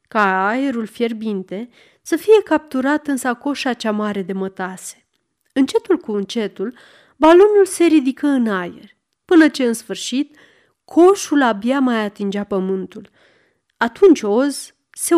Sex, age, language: female, 30-49, Romanian